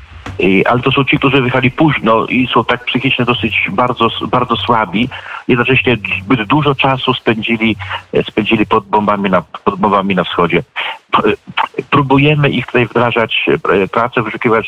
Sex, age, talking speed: male, 50-69, 135 wpm